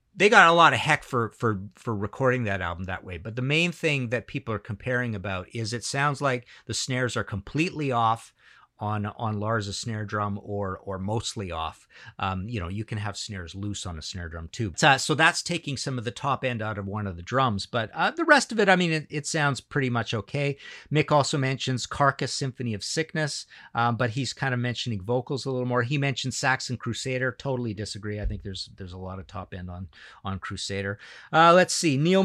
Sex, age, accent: male, 50-69, American